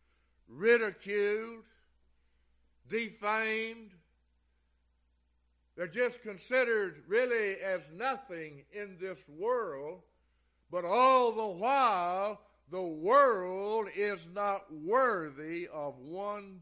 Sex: male